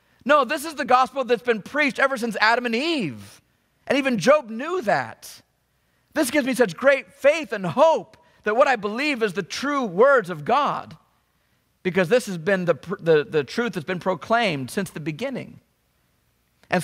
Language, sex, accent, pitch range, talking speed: English, male, American, 115-195 Hz, 180 wpm